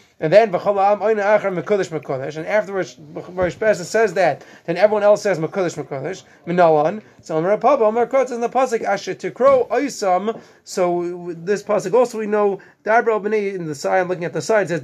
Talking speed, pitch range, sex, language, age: 195 wpm, 175-230 Hz, male, English, 30-49